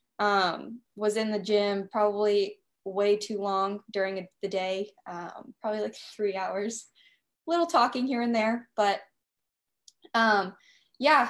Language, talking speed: English, 135 wpm